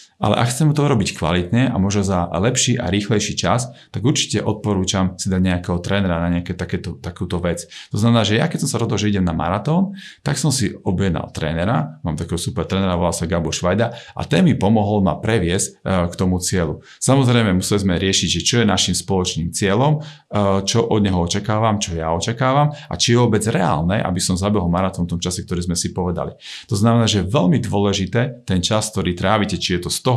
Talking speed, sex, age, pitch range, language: 210 wpm, male, 40-59, 90-115 Hz, Slovak